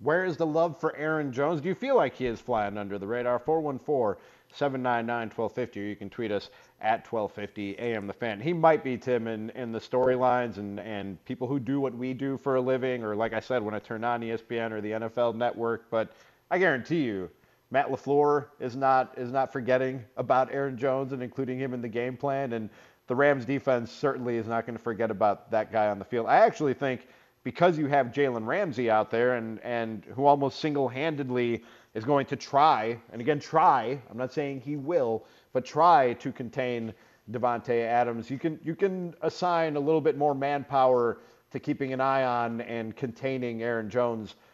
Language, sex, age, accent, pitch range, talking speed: English, male, 40-59, American, 115-140 Hz, 200 wpm